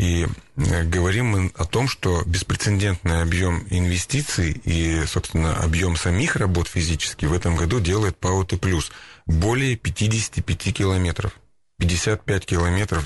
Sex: male